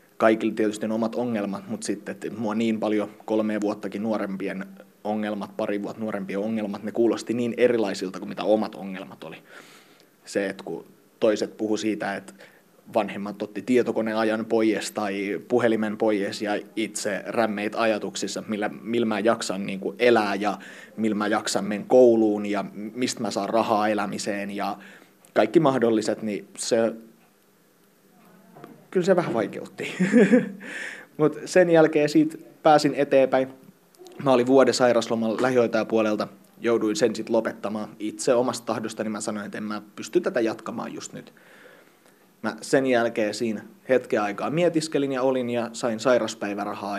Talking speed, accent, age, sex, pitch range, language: 145 wpm, native, 30-49, male, 105-125 Hz, Finnish